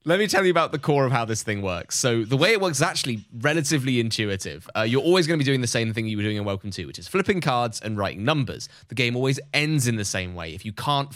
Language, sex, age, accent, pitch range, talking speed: English, male, 20-39, British, 110-145 Hz, 295 wpm